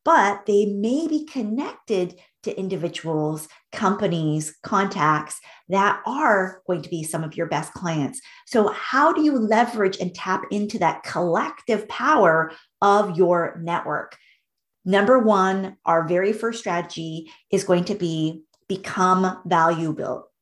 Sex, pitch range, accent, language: female, 170-225 Hz, American, English